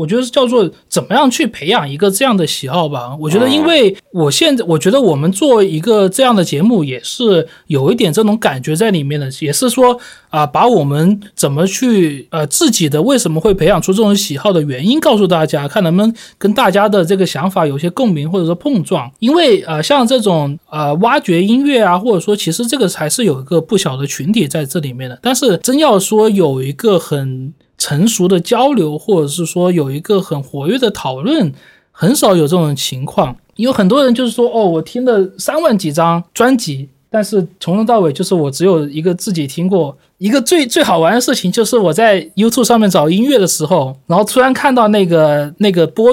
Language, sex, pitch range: Chinese, male, 155-230 Hz